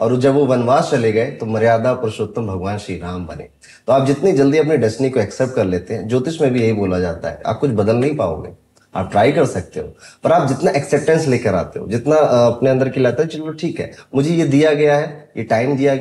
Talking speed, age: 240 wpm, 20-39